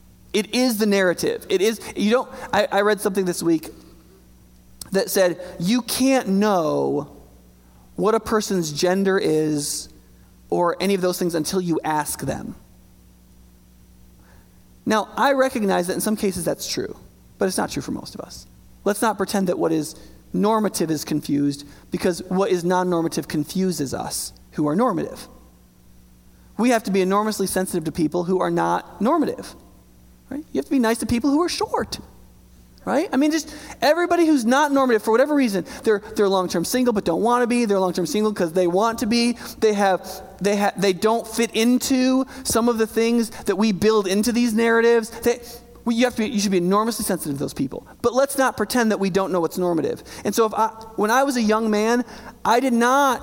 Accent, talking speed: American, 195 wpm